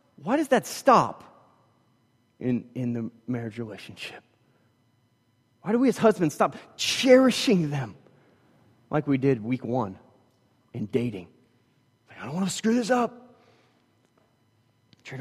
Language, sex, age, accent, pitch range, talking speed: English, male, 30-49, American, 110-145 Hz, 130 wpm